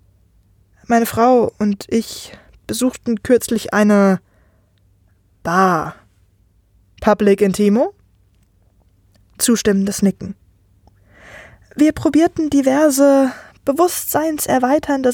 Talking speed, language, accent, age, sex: 65 wpm, German, German, 20-39, female